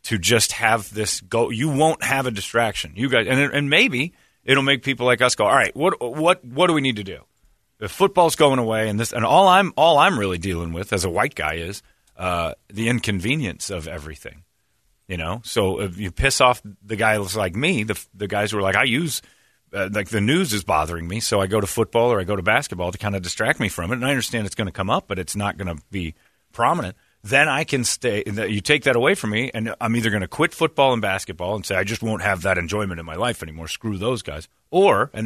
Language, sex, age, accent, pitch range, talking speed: English, male, 40-59, American, 95-130 Hz, 255 wpm